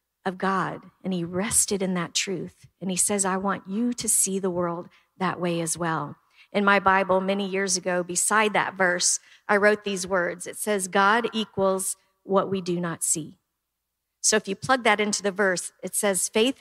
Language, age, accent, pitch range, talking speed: English, 50-69, American, 180-210 Hz, 200 wpm